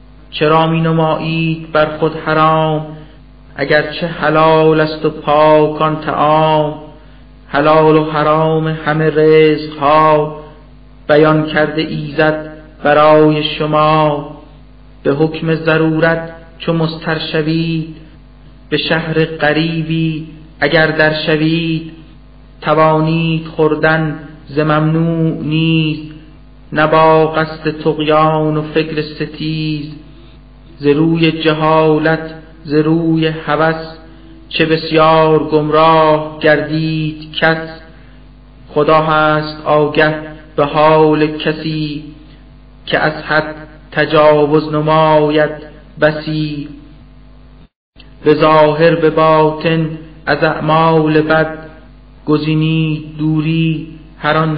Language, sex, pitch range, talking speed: Persian, male, 150-160 Hz, 80 wpm